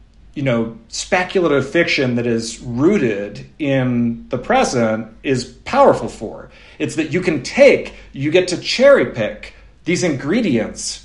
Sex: male